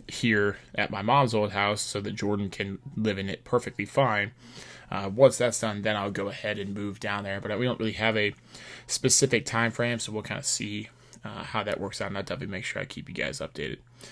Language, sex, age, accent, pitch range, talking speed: English, male, 20-39, American, 105-120 Hz, 240 wpm